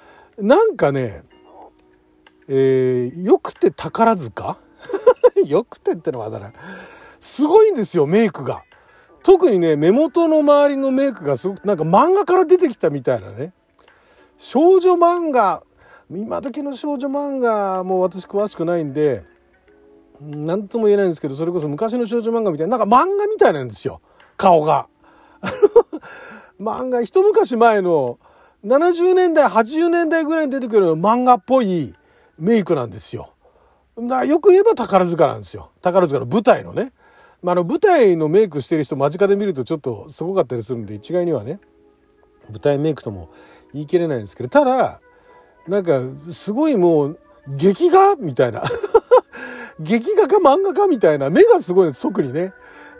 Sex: male